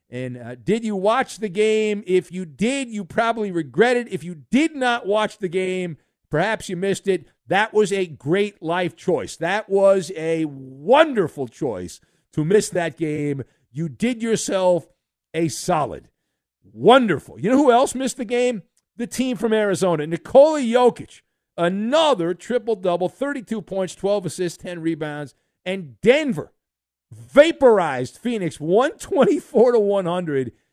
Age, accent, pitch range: 50-69, American, 150-215 Hz